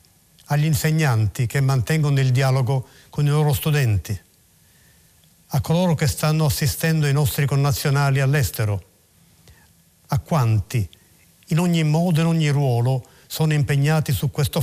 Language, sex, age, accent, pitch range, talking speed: Italian, male, 50-69, native, 115-150 Hz, 130 wpm